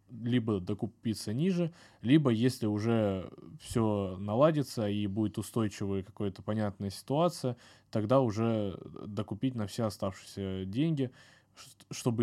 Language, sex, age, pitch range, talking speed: Russian, male, 20-39, 100-115 Hz, 110 wpm